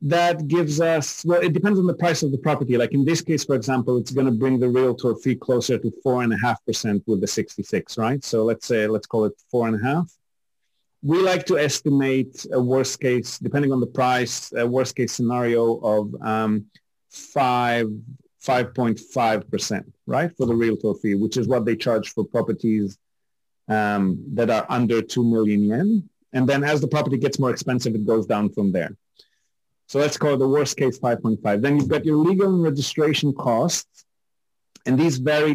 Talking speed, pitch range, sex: 185 wpm, 120-150 Hz, male